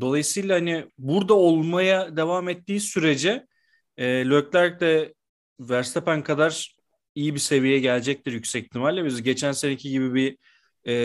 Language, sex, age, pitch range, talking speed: Turkish, male, 40-59, 130-170 Hz, 130 wpm